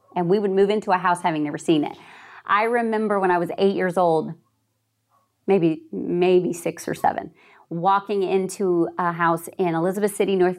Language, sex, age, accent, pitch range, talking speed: English, female, 40-59, American, 185-255 Hz, 180 wpm